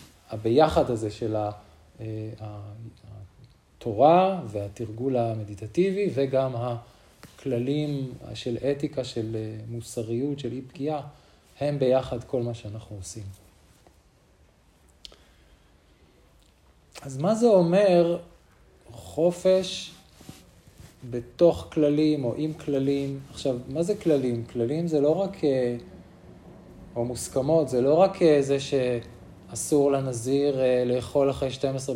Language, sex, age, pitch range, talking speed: Hebrew, male, 40-59, 110-140 Hz, 95 wpm